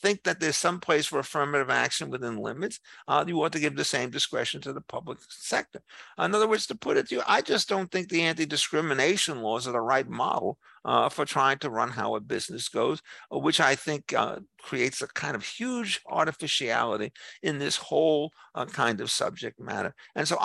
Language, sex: English, male